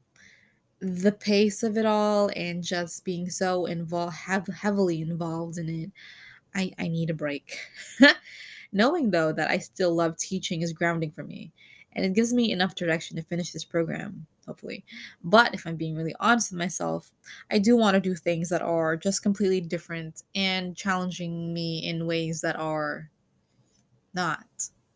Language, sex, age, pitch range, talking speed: English, female, 20-39, 170-215 Hz, 165 wpm